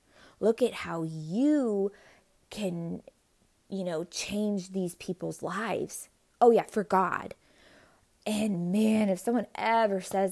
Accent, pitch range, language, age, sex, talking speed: American, 195-270 Hz, English, 20-39, female, 120 wpm